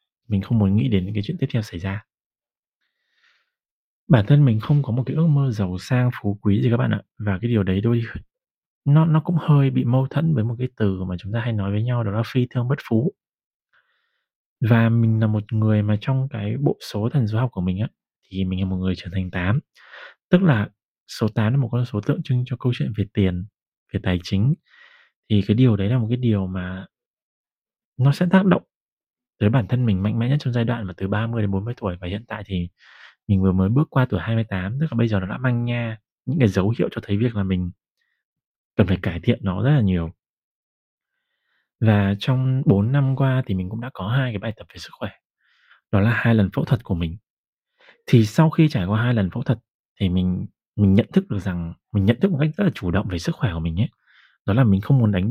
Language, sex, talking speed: Vietnamese, male, 245 wpm